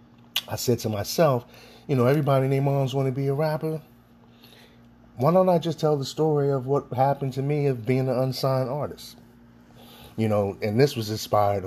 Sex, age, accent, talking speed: male, 30-49, American, 195 wpm